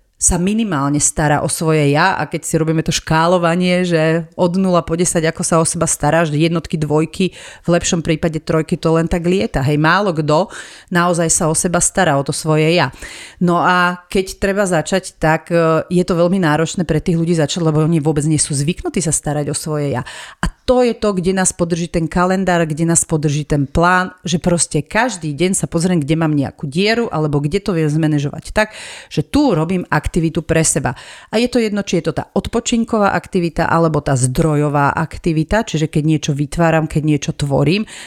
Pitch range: 155-185 Hz